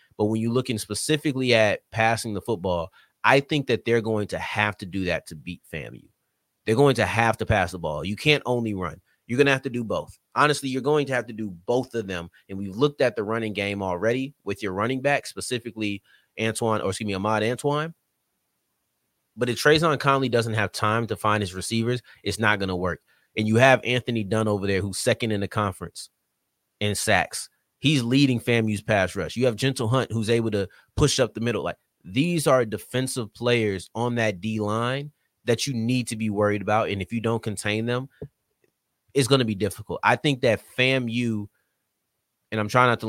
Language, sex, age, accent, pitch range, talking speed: English, male, 30-49, American, 100-125 Hz, 210 wpm